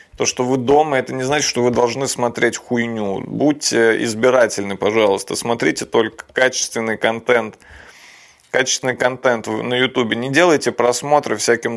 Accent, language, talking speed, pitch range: native, Russian, 140 wpm, 120-150 Hz